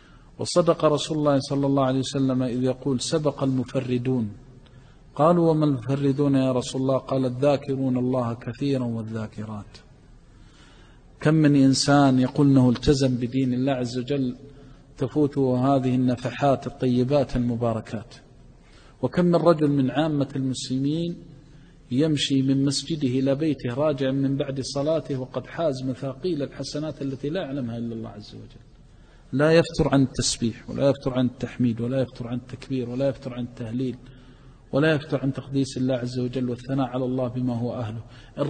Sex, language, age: male, Arabic, 40-59